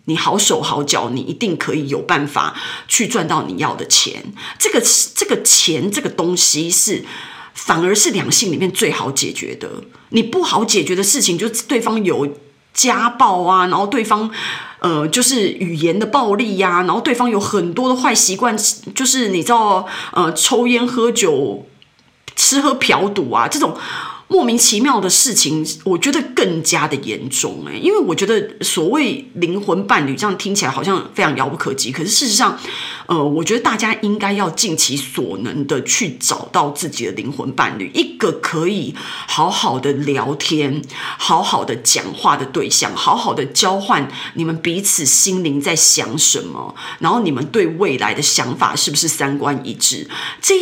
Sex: female